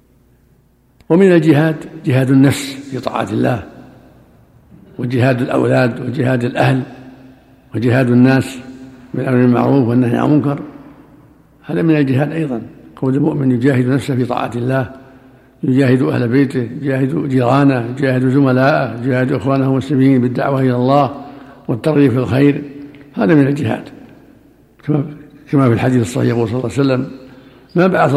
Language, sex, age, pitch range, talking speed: Arabic, male, 60-79, 130-145 Hz, 125 wpm